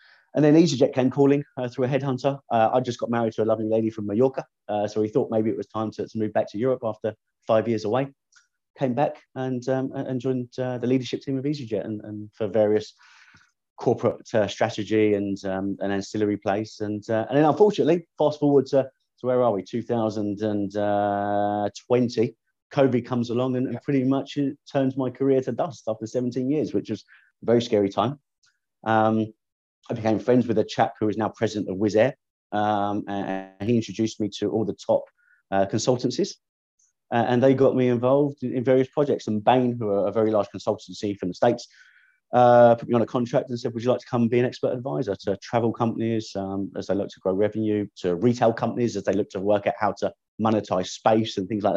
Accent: British